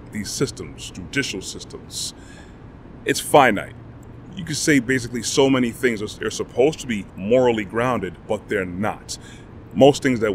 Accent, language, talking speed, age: American, English, 150 wpm, 30-49